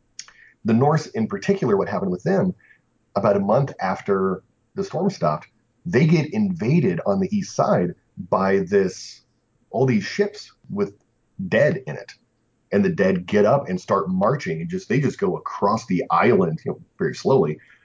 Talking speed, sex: 165 wpm, male